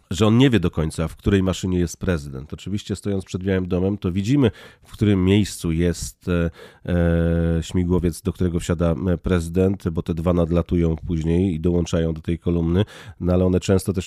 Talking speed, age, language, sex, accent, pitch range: 180 wpm, 30-49, Polish, male, native, 85-95 Hz